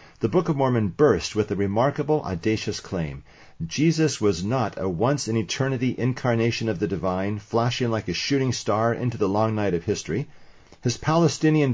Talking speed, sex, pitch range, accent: 165 wpm, male, 100-135 Hz, American